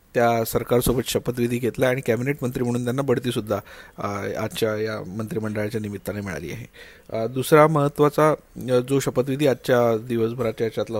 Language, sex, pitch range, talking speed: Marathi, male, 115-135 Hz, 105 wpm